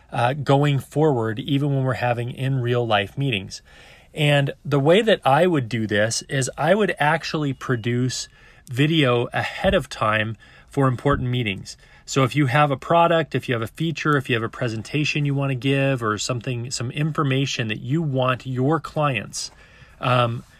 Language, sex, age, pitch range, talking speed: English, male, 30-49, 120-145 Hz, 180 wpm